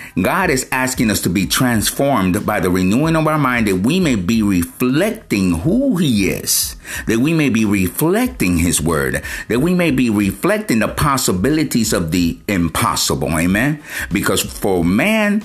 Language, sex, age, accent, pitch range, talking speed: English, male, 50-69, American, 90-140 Hz, 165 wpm